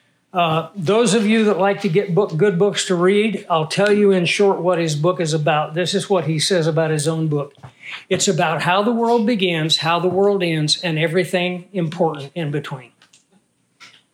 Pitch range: 155-190 Hz